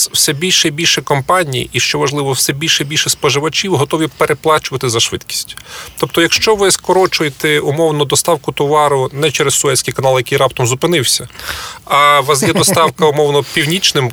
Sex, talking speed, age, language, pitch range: male, 160 wpm, 30-49, Ukrainian, 125-160 Hz